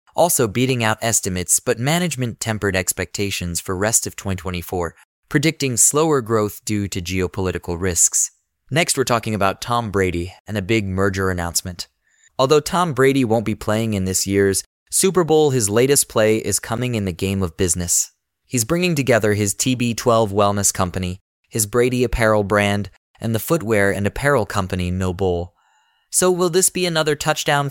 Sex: male